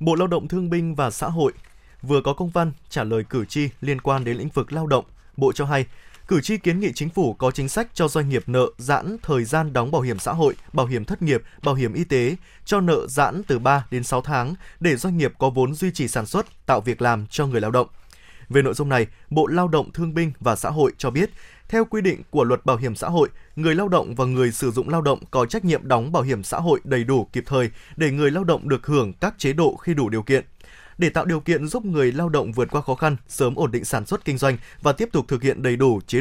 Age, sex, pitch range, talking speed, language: 20-39, male, 130-170 Hz, 270 wpm, Vietnamese